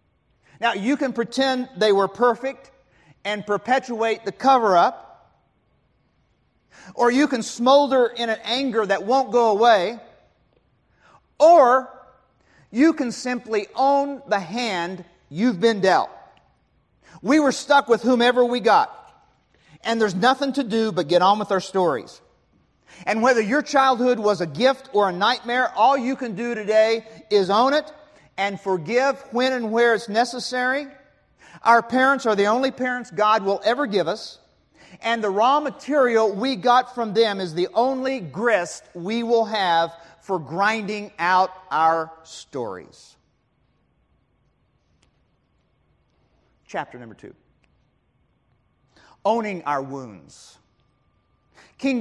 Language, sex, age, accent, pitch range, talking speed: English, male, 40-59, American, 195-260 Hz, 130 wpm